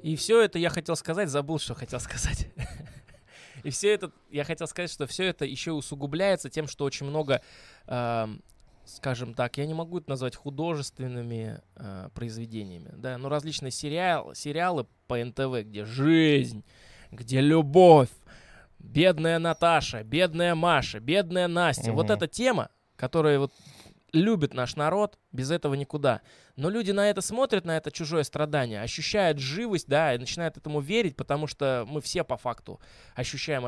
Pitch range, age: 125-175 Hz, 20-39